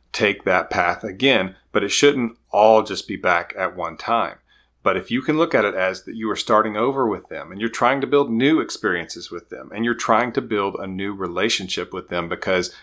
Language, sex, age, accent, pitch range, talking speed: English, male, 30-49, American, 95-115 Hz, 230 wpm